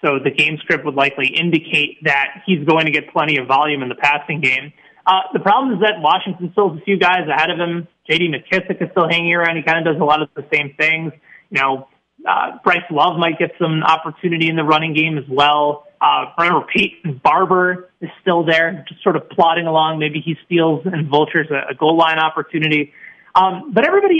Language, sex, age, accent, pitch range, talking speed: English, male, 30-49, American, 150-180 Hz, 220 wpm